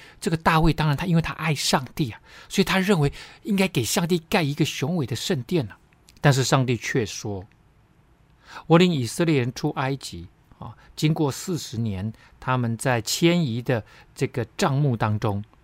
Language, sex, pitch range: Chinese, male, 115-155 Hz